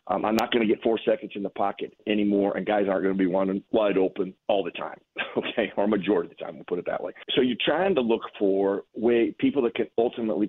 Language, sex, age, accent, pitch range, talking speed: English, male, 40-59, American, 95-110 Hz, 265 wpm